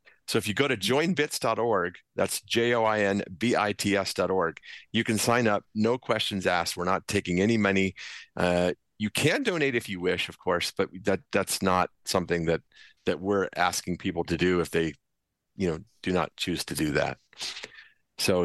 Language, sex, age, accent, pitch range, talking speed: English, male, 40-59, American, 95-115 Hz, 165 wpm